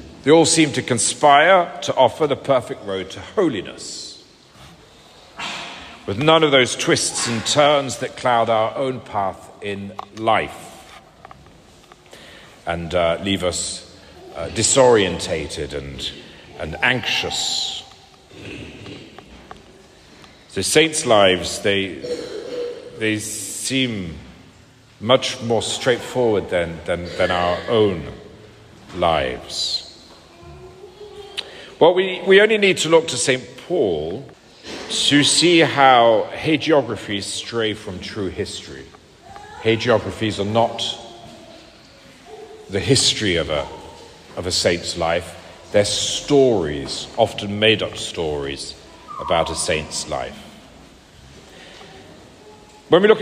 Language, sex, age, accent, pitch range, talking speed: English, male, 50-69, British, 95-145 Hz, 105 wpm